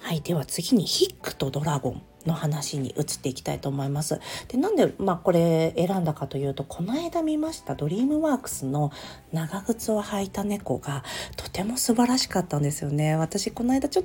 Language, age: Japanese, 40-59